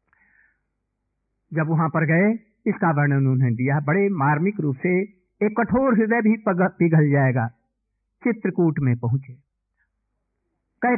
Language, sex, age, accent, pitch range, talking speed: Hindi, male, 50-69, native, 145-210 Hz, 120 wpm